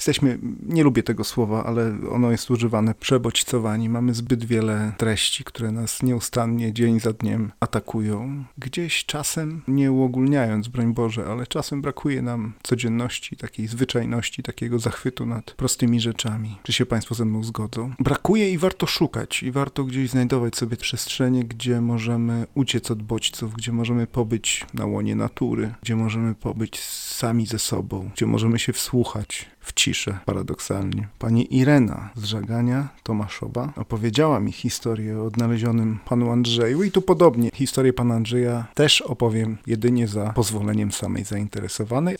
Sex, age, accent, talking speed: male, 40-59, native, 150 wpm